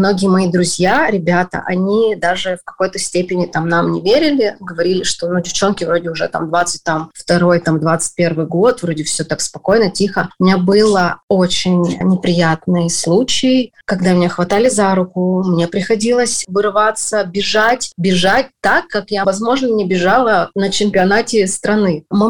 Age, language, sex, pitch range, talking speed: 30-49, English, female, 175-205 Hz, 155 wpm